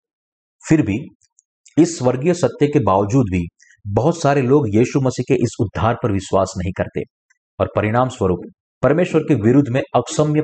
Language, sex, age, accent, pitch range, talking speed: Hindi, male, 50-69, native, 105-135 Hz, 160 wpm